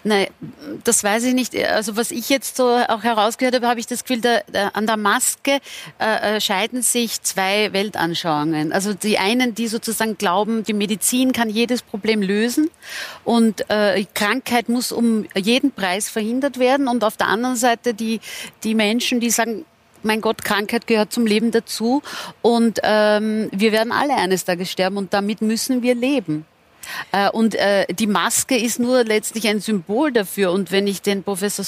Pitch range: 205-240 Hz